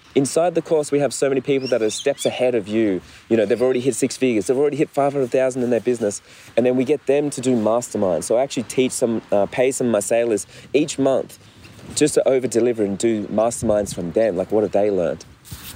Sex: male